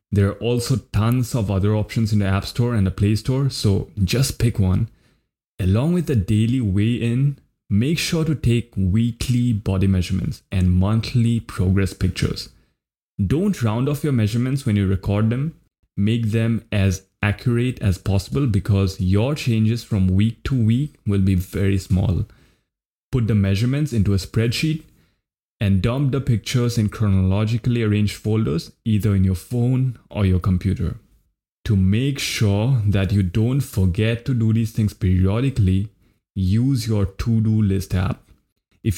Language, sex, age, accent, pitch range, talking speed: English, male, 20-39, Indian, 100-120 Hz, 155 wpm